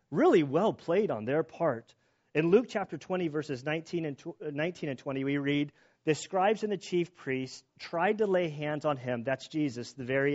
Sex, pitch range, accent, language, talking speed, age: male, 135-175 Hz, American, English, 195 wpm, 40-59